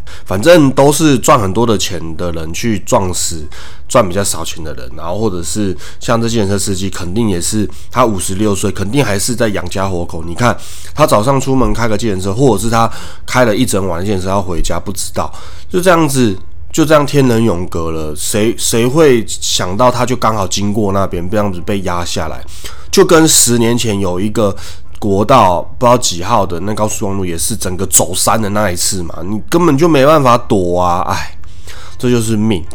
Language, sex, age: Chinese, male, 20-39